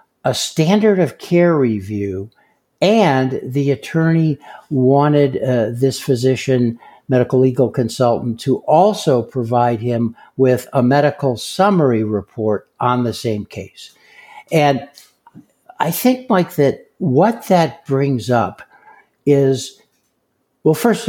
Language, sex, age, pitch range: English, male, 60-79, 120-150 Hz